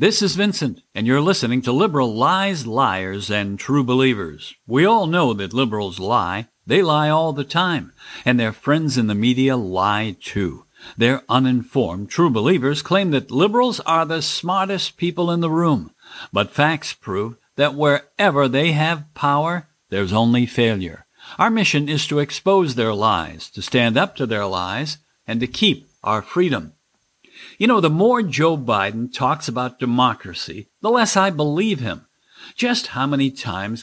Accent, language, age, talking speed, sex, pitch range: American, English, 60-79, 165 wpm, male, 120-170 Hz